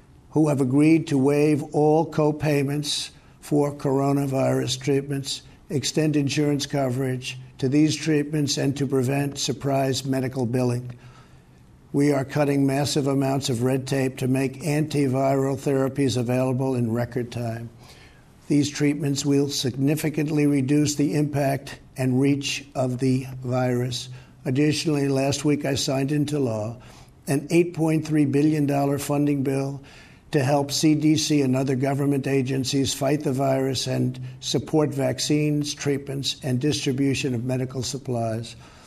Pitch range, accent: 130-145 Hz, American